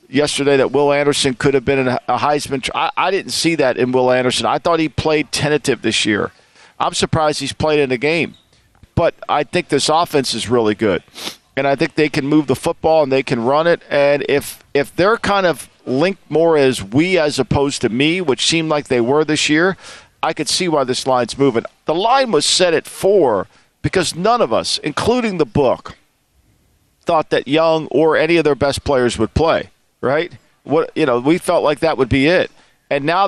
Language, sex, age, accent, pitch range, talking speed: English, male, 50-69, American, 130-160 Hz, 210 wpm